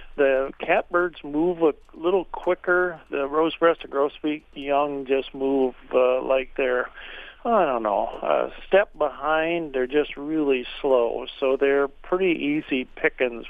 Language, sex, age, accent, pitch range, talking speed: English, male, 50-69, American, 135-165 Hz, 140 wpm